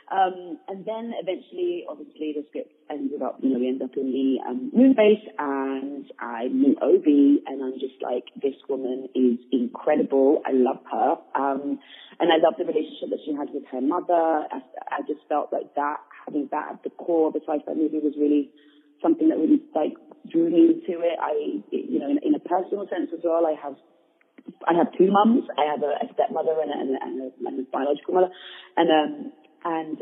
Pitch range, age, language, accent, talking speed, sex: 150-240 Hz, 30-49, English, British, 200 wpm, female